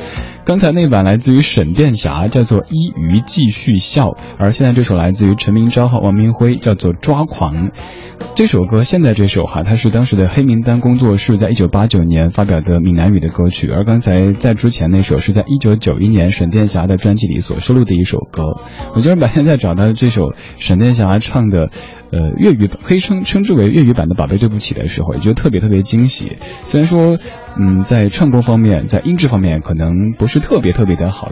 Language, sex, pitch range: Chinese, male, 95-125 Hz